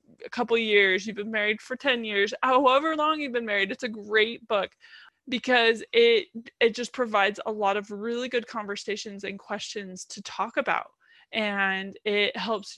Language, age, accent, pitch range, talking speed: English, 20-39, American, 200-250 Hz, 175 wpm